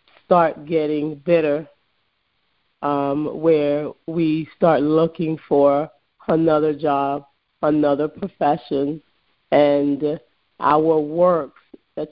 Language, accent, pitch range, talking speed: English, American, 155-215 Hz, 85 wpm